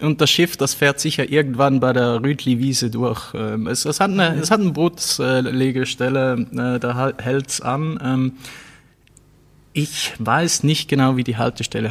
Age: 20-39